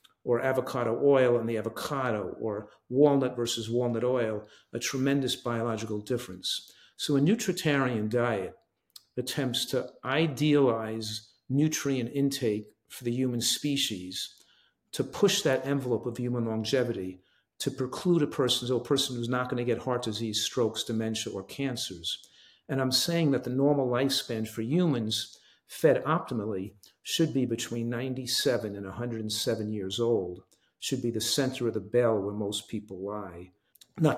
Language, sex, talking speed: English, male, 145 wpm